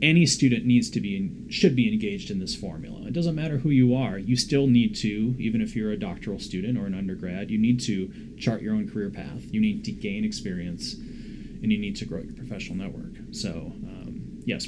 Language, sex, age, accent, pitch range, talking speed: English, male, 30-49, American, 120-170 Hz, 220 wpm